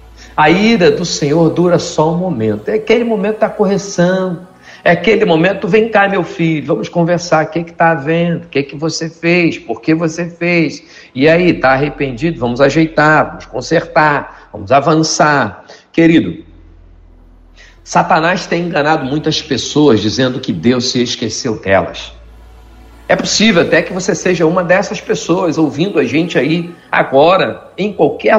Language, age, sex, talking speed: Portuguese, 50-69, male, 160 wpm